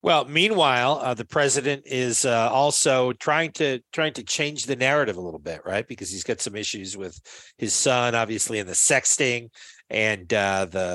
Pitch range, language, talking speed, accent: 100-125 Hz, English, 185 wpm, American